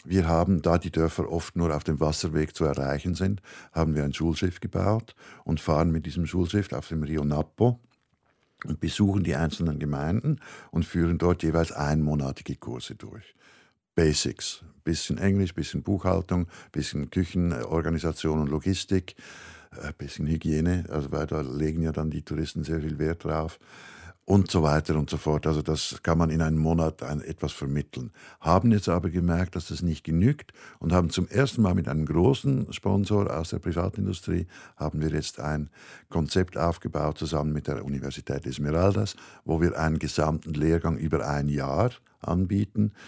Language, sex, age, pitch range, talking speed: German, male, 60-79, 75-95 Hz, 165 wpm